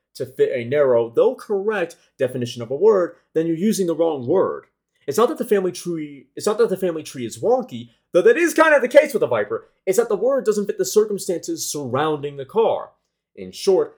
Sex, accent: male, American